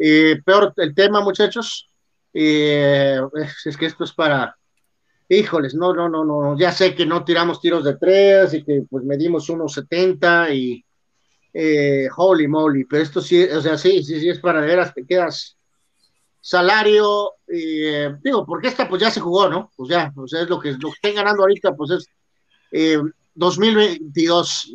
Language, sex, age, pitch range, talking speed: Spanish, male, 40-59, 155-195 Hz, 180 wpm